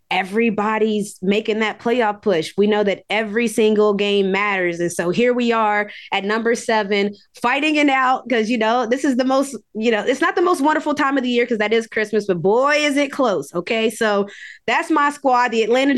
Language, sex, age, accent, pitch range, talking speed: English, female, 20-39, American, 205-260 Hz, 215 wpm